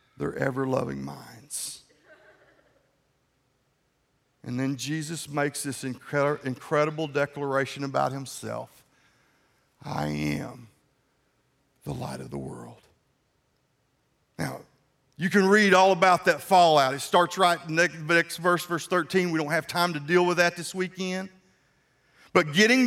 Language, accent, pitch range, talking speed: English, American, 135-180 Hz, 120 wpm